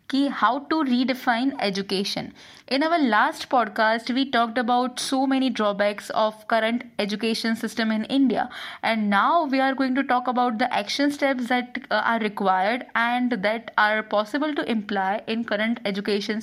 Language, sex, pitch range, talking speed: Hindi, female, 215-270 Hz, 160 wpm